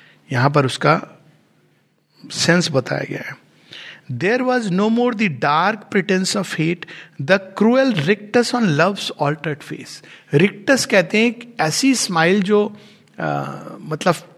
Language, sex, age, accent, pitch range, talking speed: Hindi, male, 60-79, native, 145-210 Hz, 135 wpm